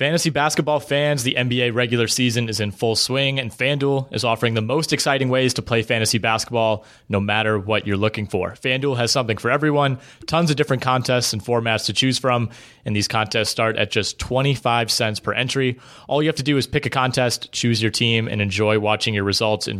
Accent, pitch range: American, 110-135 Hz